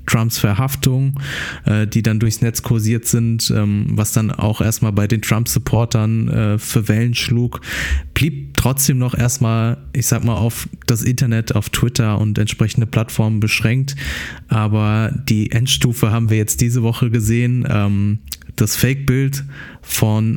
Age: 20-39